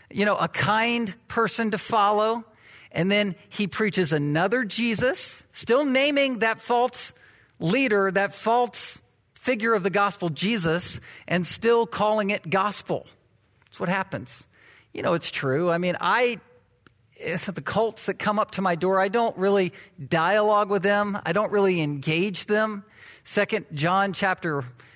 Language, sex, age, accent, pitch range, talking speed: English, male, 50-69, American, 185-235 Hz, 150 wpm